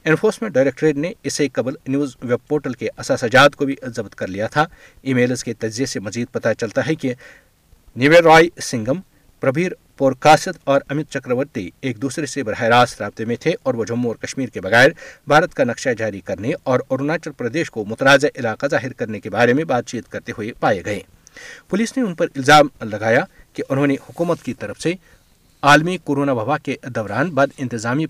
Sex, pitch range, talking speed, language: male, 120-150 Hz, 195 wpm, Urdu